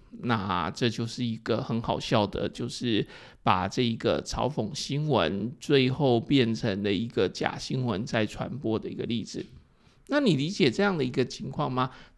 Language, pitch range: Chinese, 125-170 Hz